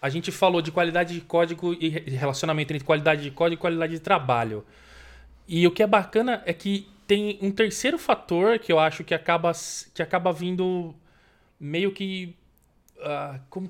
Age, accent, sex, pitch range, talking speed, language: 20-39, Brazilian, male, 130-180 Hz, 165 wpm, Portuguese